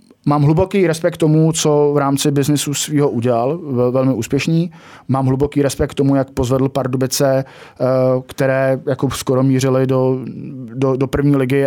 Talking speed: 145 wpm